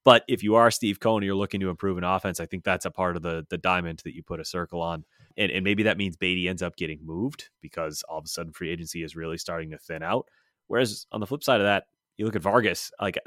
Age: 30-49